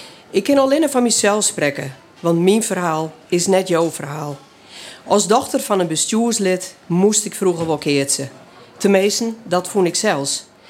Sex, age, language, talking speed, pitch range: female, 40-59, Dutch, 155 wpm, 165-220 Hz